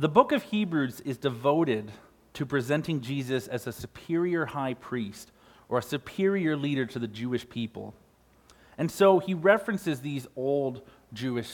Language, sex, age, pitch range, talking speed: English, male, 40-59, 120-160 Hz, 150 wpm